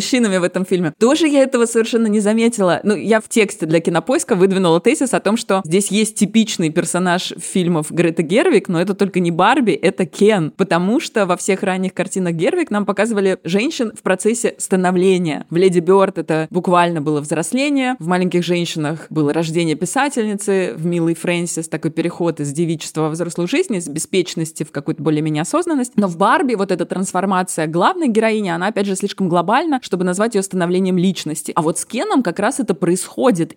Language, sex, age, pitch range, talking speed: Russian, female, 20-39, 175-215 Hz, 185 wpm